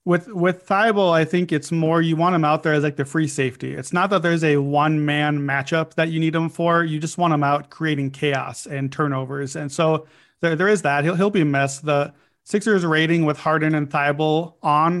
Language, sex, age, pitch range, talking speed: English, male, 30-49, 145-180 Hz, 225 wpm